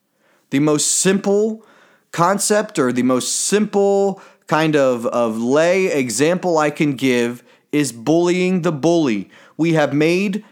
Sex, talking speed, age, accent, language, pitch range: male, 130 wpm, 30-49, American, English, 155-210 Hz